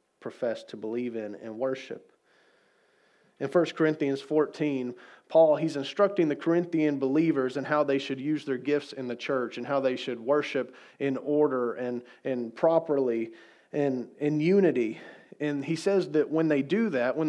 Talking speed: 165 wpm